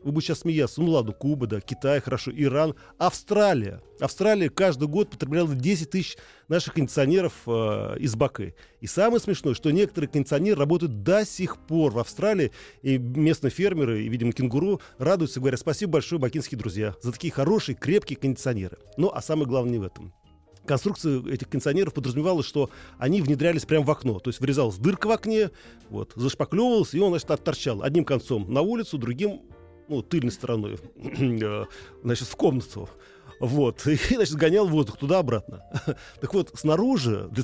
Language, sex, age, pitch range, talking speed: Russian, male, 40-59, 120-170 Hz, 165 wpm